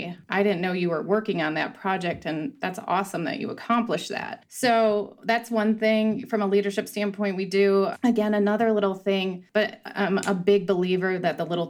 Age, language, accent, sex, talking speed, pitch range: 30-49, English, American, female, 195 wpm, 185-220 Hz